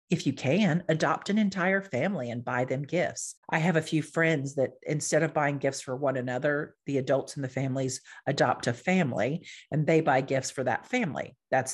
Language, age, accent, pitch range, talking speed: English, 40-59, American, 130-175 Hz, 205 wpm